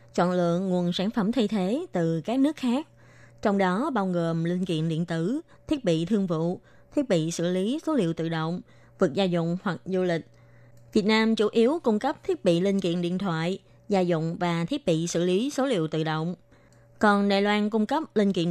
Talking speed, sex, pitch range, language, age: 215 wpm, female, 175-230 Hz, Vietnamese, 20-39